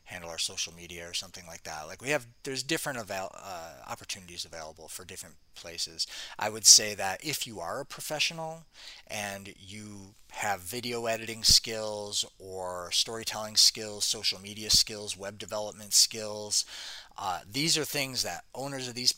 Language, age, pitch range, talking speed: English, 30-49, 90-115 Hz, 165 wpm